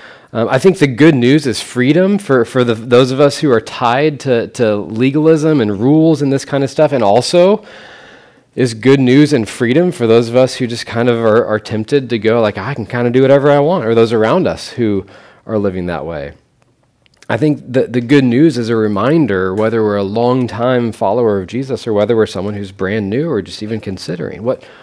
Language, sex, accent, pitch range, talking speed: English, male, American, 100-130 Hz, 225 wpm